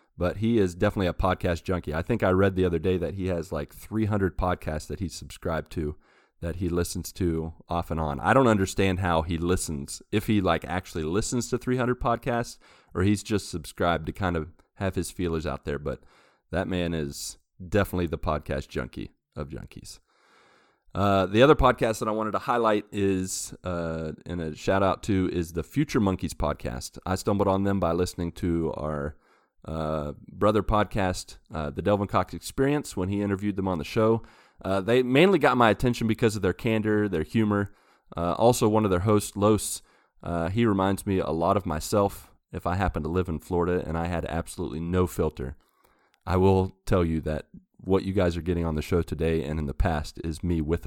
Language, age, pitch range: English, 30-49, 85-105 Hz